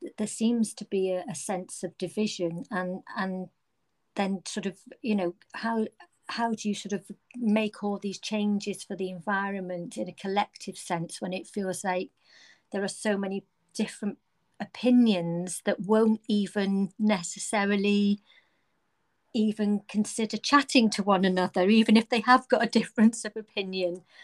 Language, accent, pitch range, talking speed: English, British, 190-225 Hz, 155 wpm